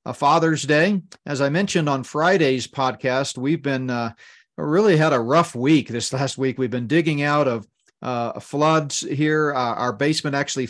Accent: American